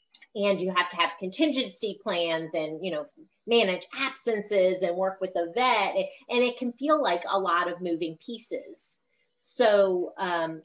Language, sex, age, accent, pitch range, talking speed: English, female, 30-49, American, 170-215 Hz, 165 wpm